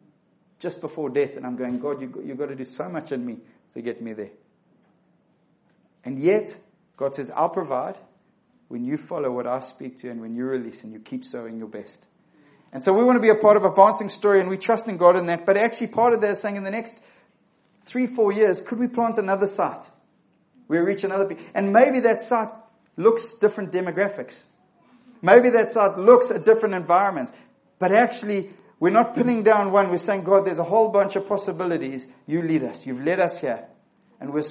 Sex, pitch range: male, 145-210 Hz